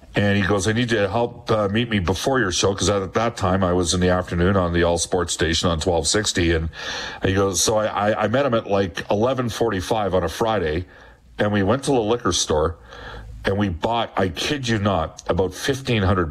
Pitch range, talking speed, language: 90-110 Hz, 220 wpm, English